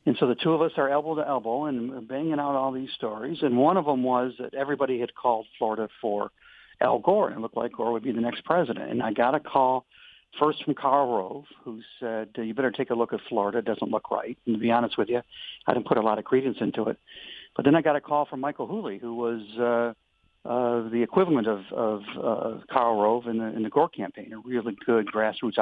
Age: 60-79